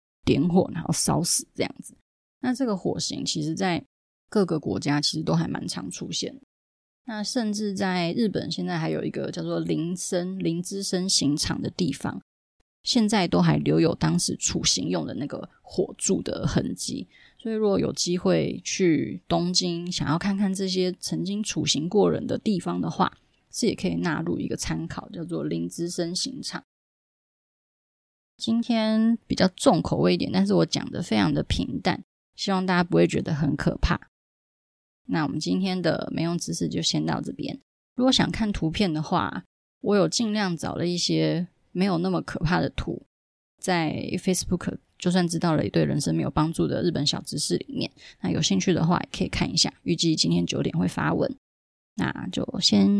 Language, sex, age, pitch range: Chinese, female, 20-39, 160-200 Hz